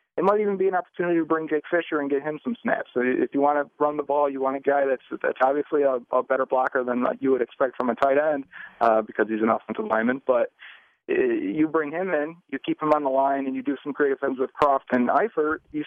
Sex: male